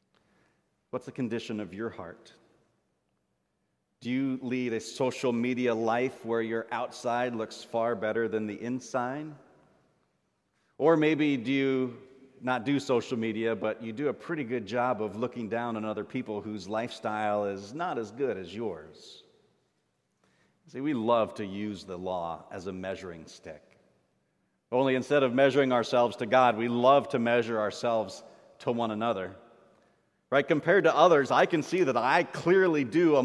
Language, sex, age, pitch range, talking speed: English, male, 40-59, 115-155 Hz, 160 wpm